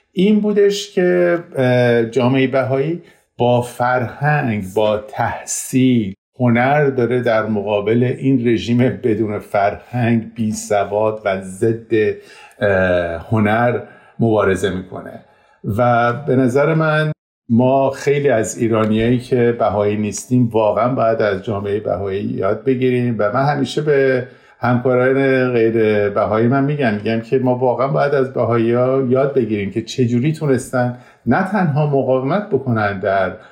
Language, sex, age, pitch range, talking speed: Persian, male, 50-69, 110-140 Hz, 125 wpm